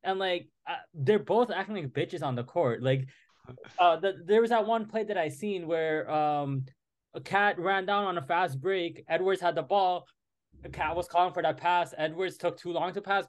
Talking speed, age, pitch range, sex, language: 210 wpm, 20-39, 135-185 Hz, male, English